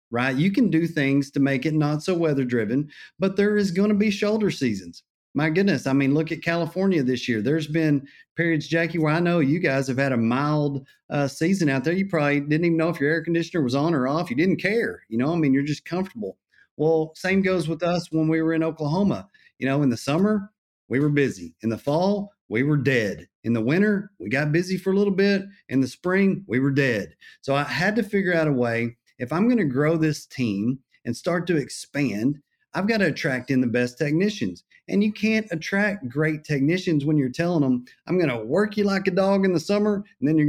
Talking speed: 235 wpm